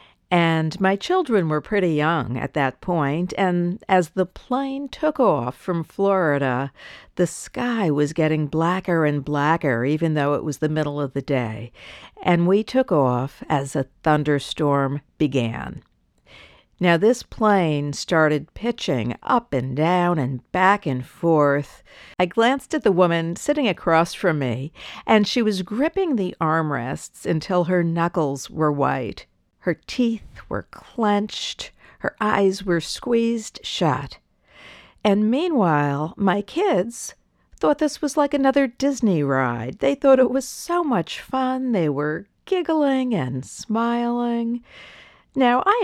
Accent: American